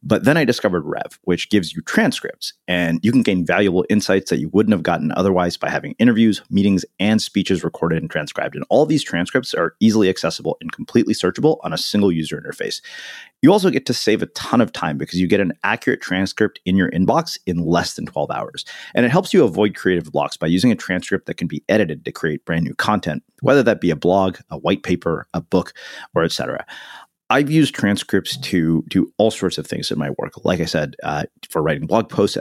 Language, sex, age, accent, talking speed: English, male, 30-49, American, 225 wpm